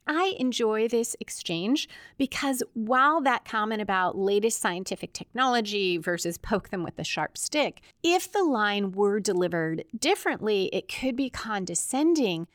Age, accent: 30-49, American